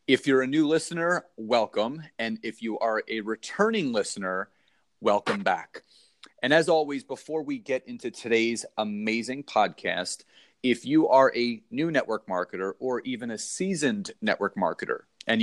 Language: English